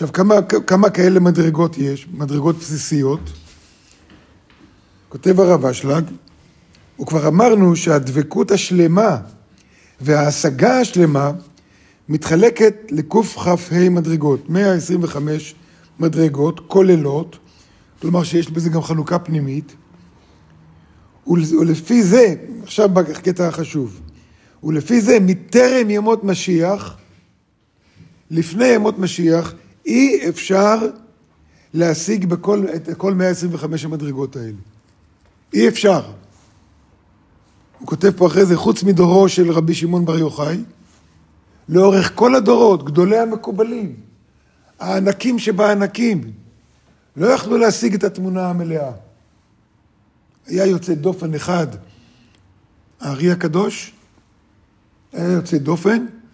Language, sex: Hebrew, male